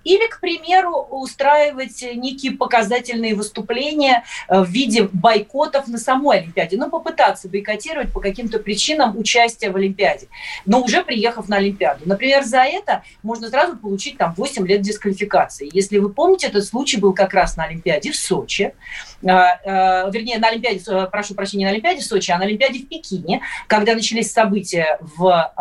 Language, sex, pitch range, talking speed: Russian, female, 185-260 Hz, 160 wpm